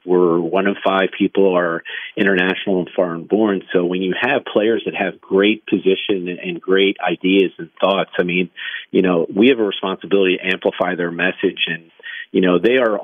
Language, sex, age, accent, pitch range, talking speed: English, male, 40-59, American, 90-100 Hz, 190 wpm